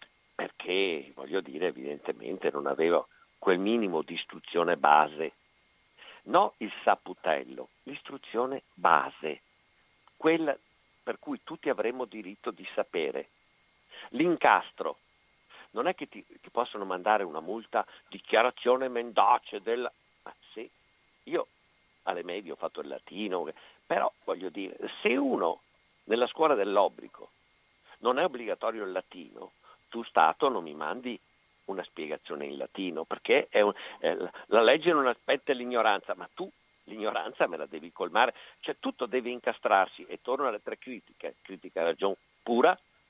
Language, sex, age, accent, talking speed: Italian, male, 50-69, native, 135 wpm